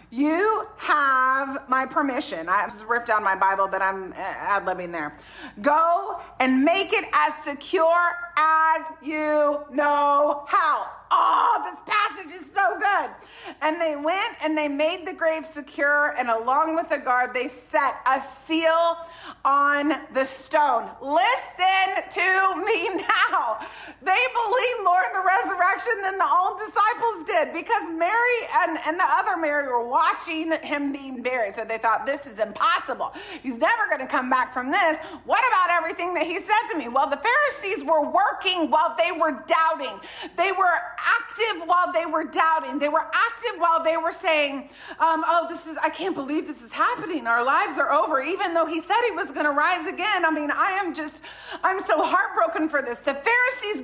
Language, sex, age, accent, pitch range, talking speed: English, female, 40-59, American, 295-370 Hz, 175 wpm